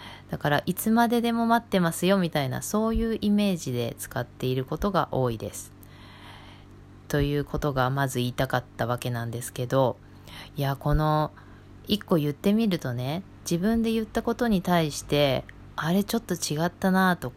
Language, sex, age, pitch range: Japanese, female, 20-39, 120-190 Hz